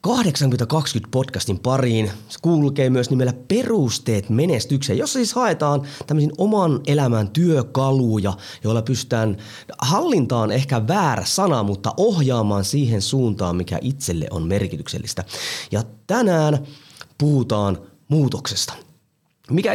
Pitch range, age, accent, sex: 100-145 Hz, 30-49, native, male